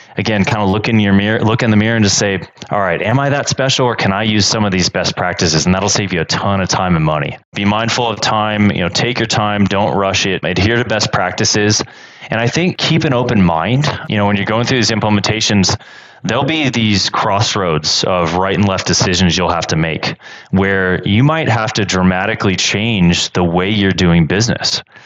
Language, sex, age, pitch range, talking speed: English, male, 20-39, 90-110 Hz, 230 wpm